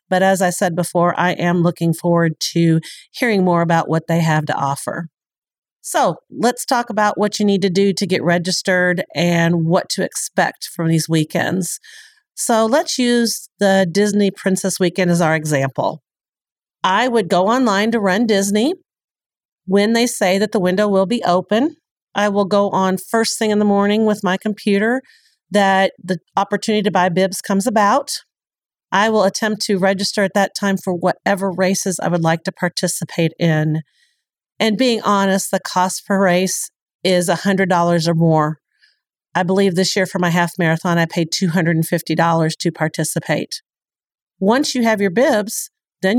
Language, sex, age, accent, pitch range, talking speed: English, female, 40-59, American, 175-215 Hz, 170 wpm